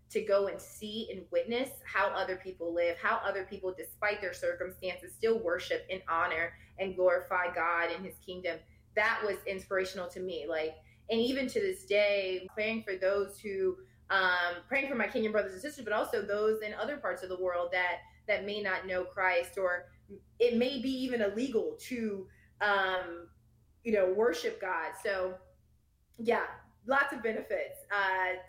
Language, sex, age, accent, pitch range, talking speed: English, female, 20-39, American, 180-220 Hz, 175 wpm